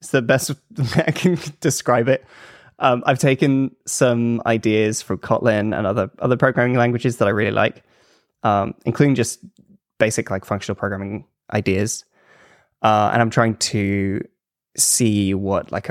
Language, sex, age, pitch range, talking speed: English, male, 10-29, 105-130 Hz, 145 wpm